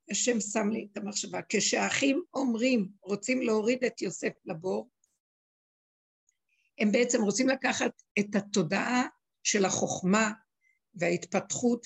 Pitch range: 190-250 Hz